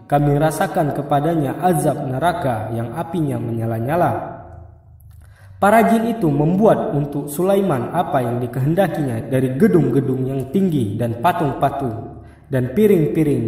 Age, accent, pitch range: 20-39, native, 125-170 Hz